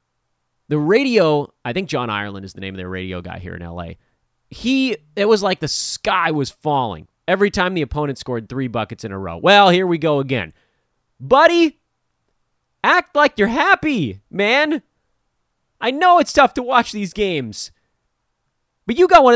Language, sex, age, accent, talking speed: English, male, 30-49, American, 175 wpm